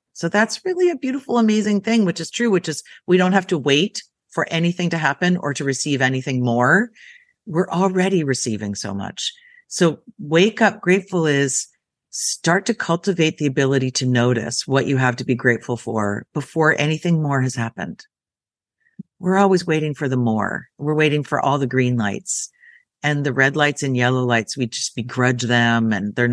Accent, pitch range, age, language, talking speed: American, 130-185 Hz, 50-69, English, 185 wpm